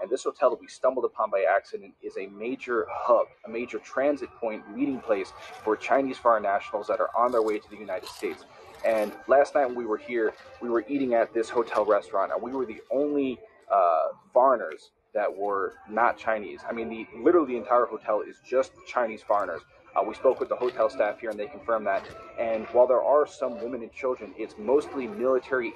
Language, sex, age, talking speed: English, male, 30-49, 210 wpm